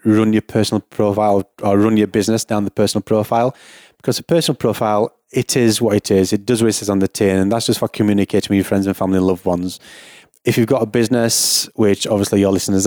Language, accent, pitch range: English, British, 100-115 Hz